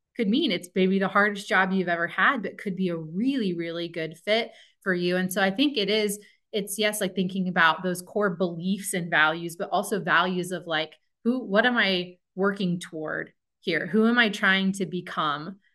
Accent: American